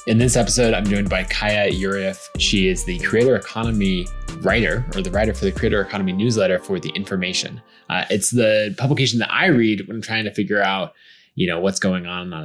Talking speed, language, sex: 210 wpm, English, male